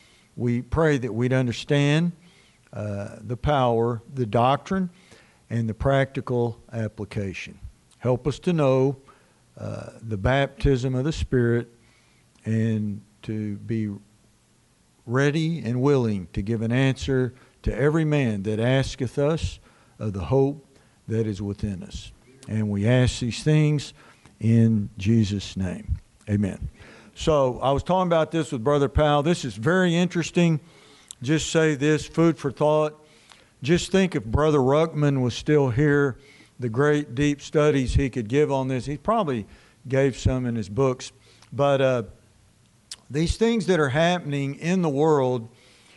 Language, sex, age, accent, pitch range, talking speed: English, male, 60-79, American, 115-150 Hz, 140 wpm